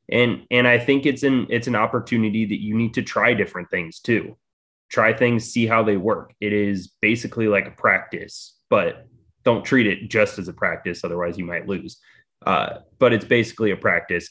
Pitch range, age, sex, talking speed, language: 100-120 Hz, 20-39, male, 195 wpm, English